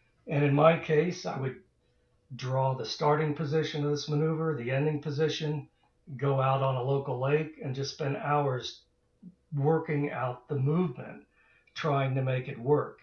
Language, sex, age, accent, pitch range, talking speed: English, male, 60-79, American, 130-150 Hz, 160 wpm